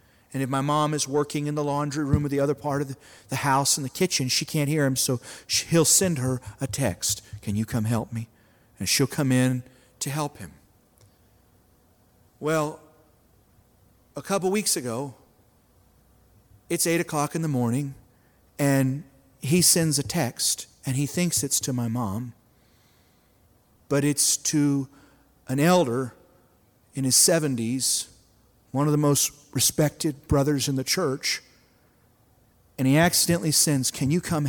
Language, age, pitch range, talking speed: English, 40-59, 115-150 Hz, 155 wpm